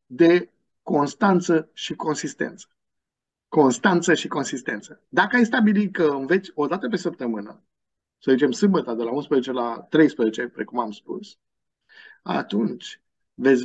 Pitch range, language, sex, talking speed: 150-215 Hz, Romanian, male, 125 wpm